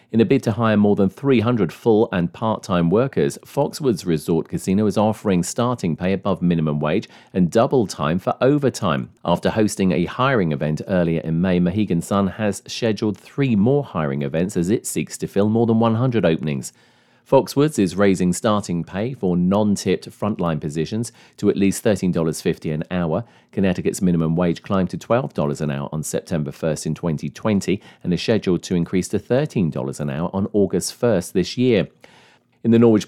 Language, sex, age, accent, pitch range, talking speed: English, male, 40-59, British, 85-110 Hz, 175 wpm